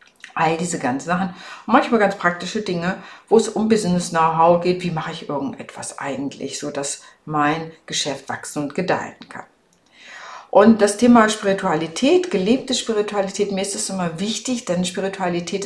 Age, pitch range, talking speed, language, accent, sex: 50-69, 165-215 Hz, 145 wpm, German, German, female